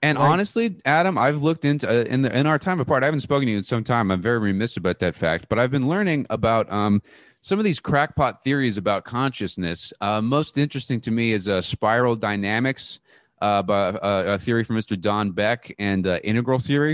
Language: English